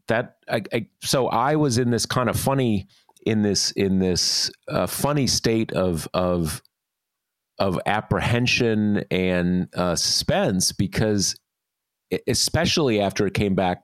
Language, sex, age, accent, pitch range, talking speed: English, male, 30-49, American, 85-105 Hz, 135 wpm